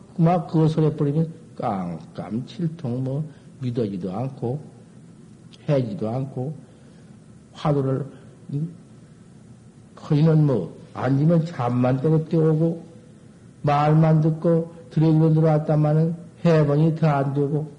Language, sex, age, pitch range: Korean, male, 50-69, 130-170 Hz